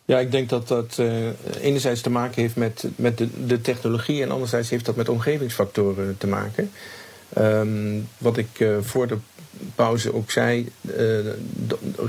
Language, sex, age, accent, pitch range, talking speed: Dutch, male, 50-69, Dutch, 110-125 Hz, 175 wpm